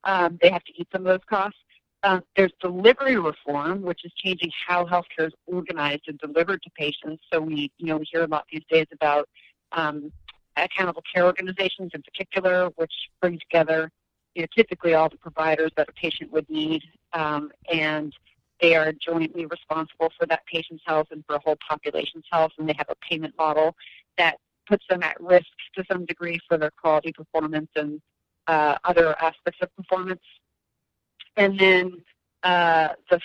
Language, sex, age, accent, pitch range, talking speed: English, female, 40-59, American, 155-185 Hz, 180 wpm